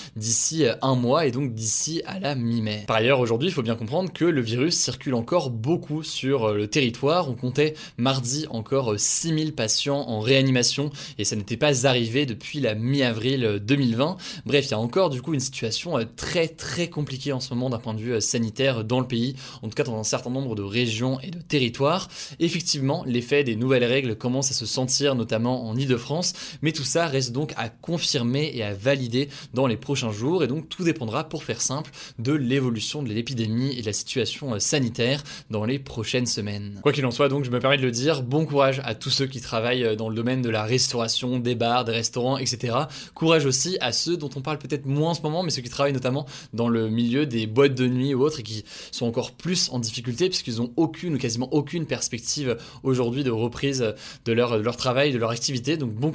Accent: French